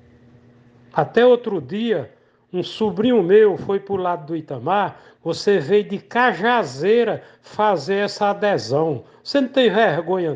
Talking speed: 135 wpm